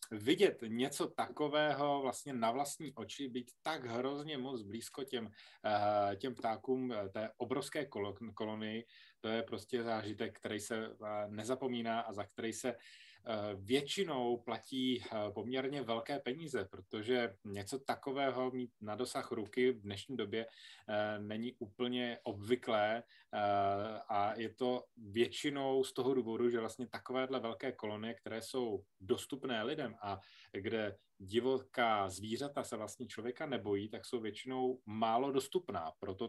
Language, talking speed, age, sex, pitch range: Slovak, 125 wpm, 20-39, male, 105-130 Hz